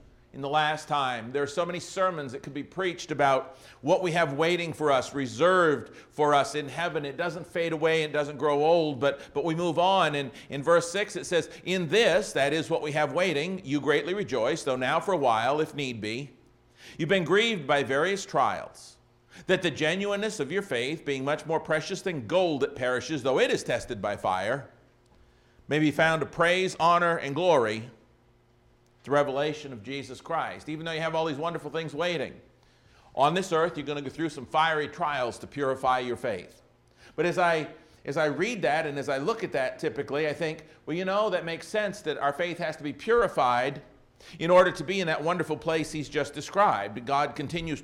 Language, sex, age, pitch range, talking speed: English, male, 50-69, 140-170 Hz, 210 wpm